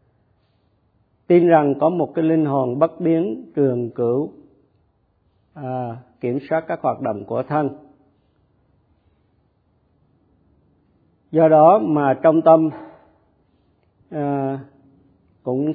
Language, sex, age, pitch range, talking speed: Vietnamese, male, 50-69, 125-160 Hz, 100 wpm